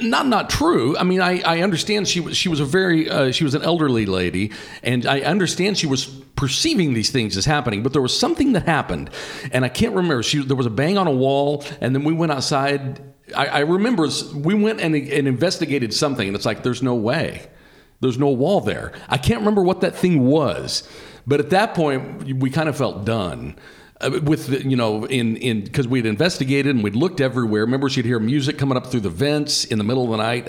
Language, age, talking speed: English, 50-69, 230 wpm